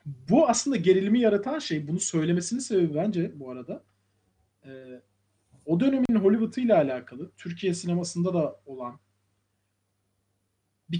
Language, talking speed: Turkish, 120 wpm